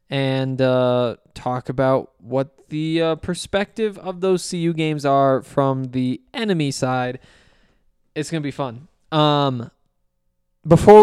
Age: 20-39